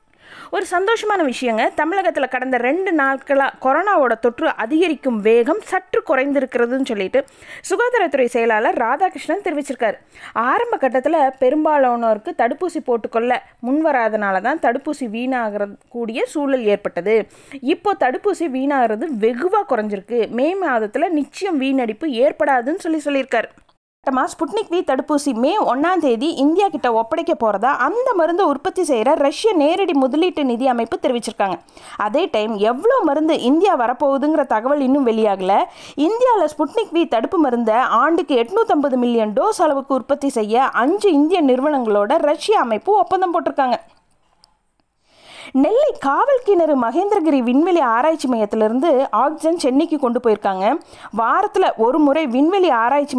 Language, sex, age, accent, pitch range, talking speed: Tamil, female, 20-39, native, 245-335 Hz, 120 wpm